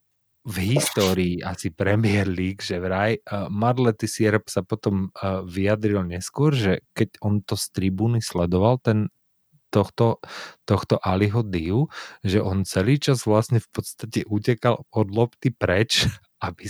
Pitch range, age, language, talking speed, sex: 95-115 Hz, 30-49, Slovak, 135 wpm, male